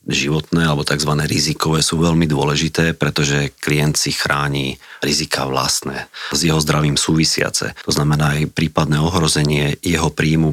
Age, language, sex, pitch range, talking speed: 40-59, Slovak, male, 75-80 Hz, 135 wpm